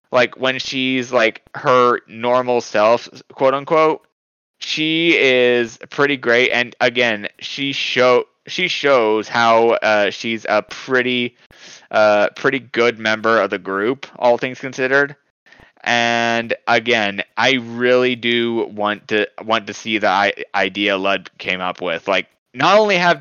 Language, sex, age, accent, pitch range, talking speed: English, male, 20-39, American, 115-155 Hz, 140 wpm